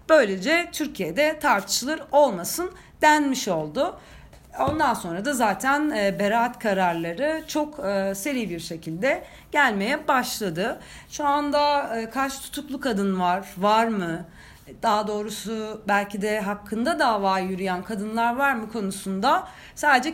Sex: female